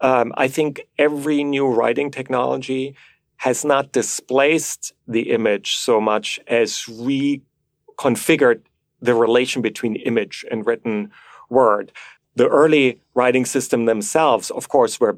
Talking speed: 125 wpm